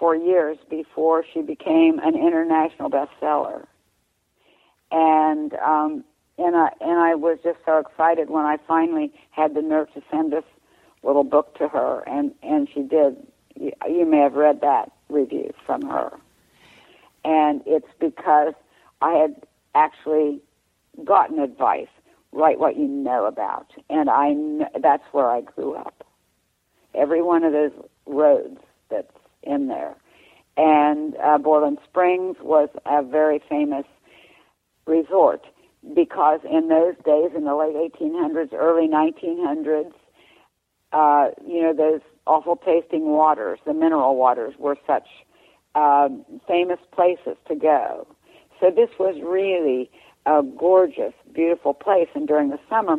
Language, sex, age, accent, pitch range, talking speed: English, female, 60-79, American, 150-175 Hz, 135 wpm